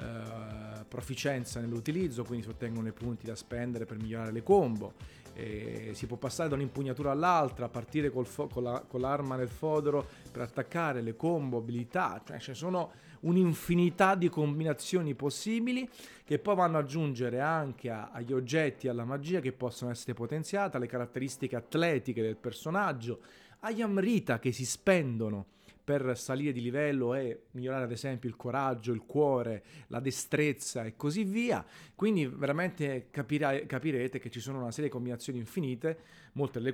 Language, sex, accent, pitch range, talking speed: Italian, male, native, 120-150 Hz, 160 wpm